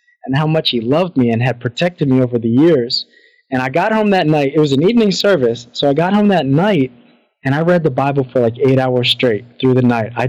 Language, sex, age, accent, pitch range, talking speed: English, male, 20-39, American, 125-165 Hz, 255 wpm